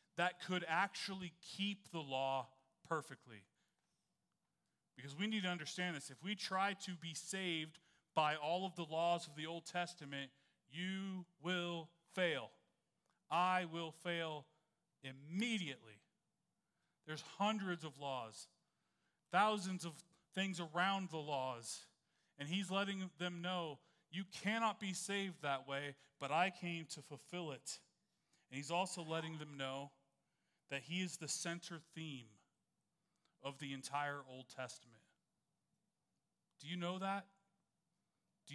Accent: American